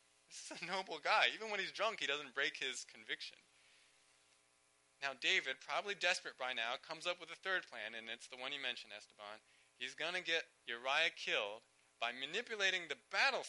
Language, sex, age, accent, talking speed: English, male, 20-39, American, 190 wpm